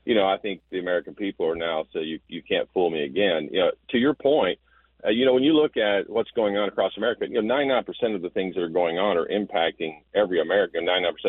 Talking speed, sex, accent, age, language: 260 wpm, male, American, 40-59, English